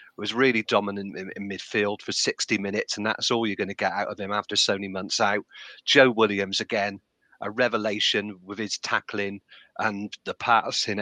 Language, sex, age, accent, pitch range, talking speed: English, male, 40-59, British, 105-130 Hz, 185 wpm